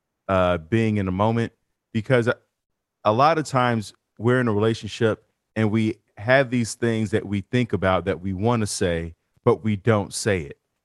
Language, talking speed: English, 185 wpm